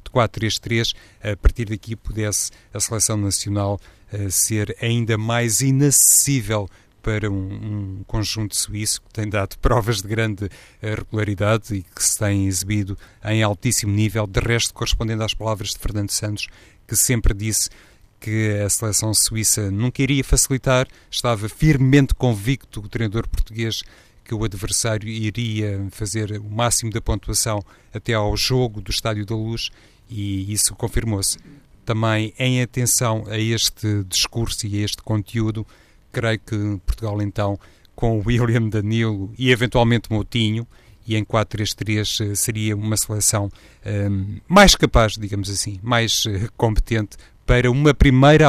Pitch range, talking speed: 105-115 Hz, 140 wpm